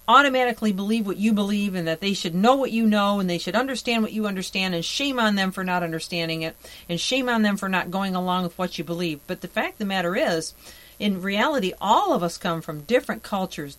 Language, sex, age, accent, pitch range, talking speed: English, female, 50-69, American, 175-225 Hz, 245 wpm